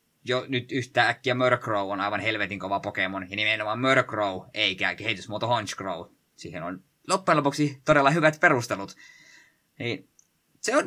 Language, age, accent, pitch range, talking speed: Finnish, 20-39, native, 105-135 Hz, 140 wpm